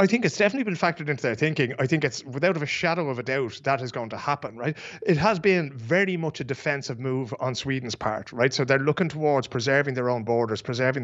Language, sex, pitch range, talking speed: English, male, 130-155 Hz, 245 wpm